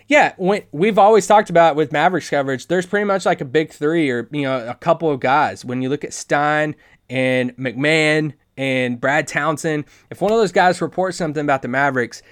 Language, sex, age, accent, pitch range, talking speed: English, male, 20-39, American, 135-190 Hz, 210 wpm